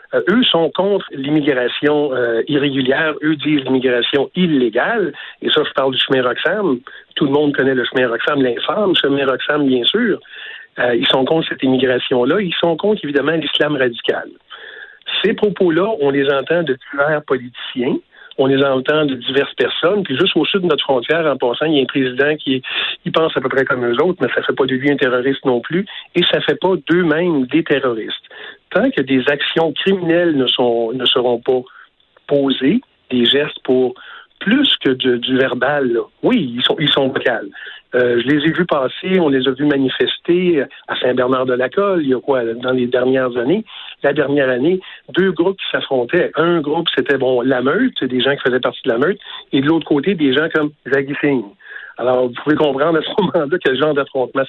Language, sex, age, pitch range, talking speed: French, male, 50-69, 130-165 Hz, 200 wpm